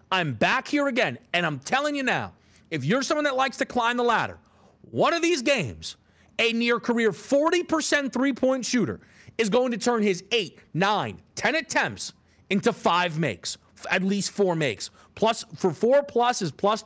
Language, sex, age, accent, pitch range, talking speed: English, male, 30-49, American, 140-190 Hz, 175 wpm